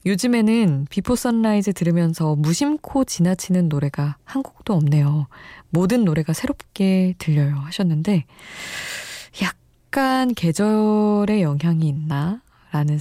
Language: Korean